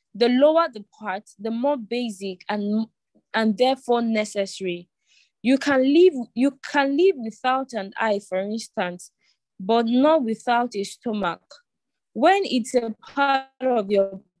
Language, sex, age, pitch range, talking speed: English, female, 20-39, 210-275 Hz, 130 wpm